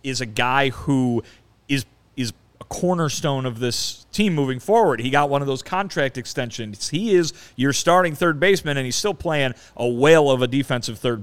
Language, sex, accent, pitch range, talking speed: English, male, American, 115-140 Hz, 190 wpm